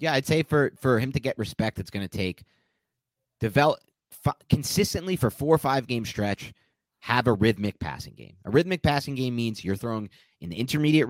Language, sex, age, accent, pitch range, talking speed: English, male, 30-49, American, 100-135 Hz, 200 wpm